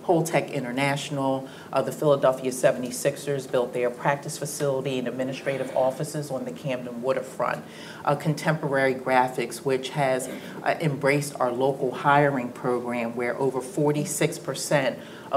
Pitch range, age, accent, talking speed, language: 125-145 Hz, 40-59, American, 120 wpm, English